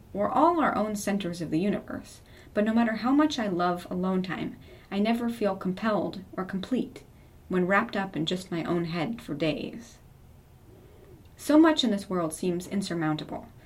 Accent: American